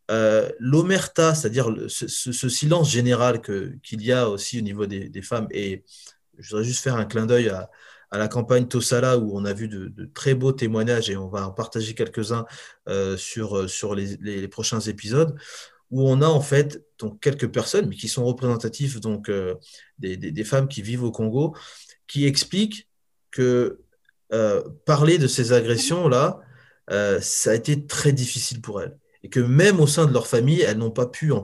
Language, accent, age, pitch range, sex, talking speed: French, French, 20-39, 115-150 Hz, male, 200 wpm